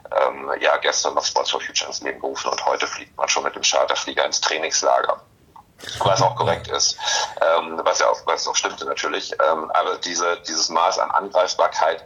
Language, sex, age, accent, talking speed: German, male, 40-59, German, 190 wpm